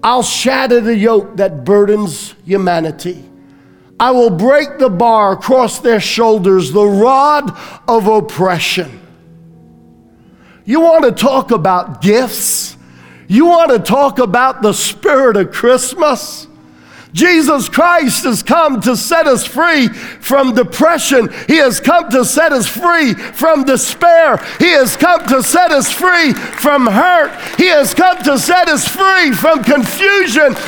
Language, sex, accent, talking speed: English, male, American, 140 wpm